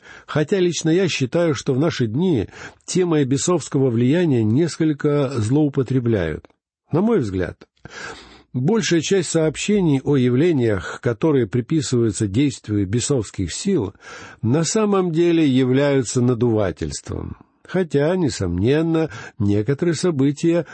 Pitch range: 115-160 Hz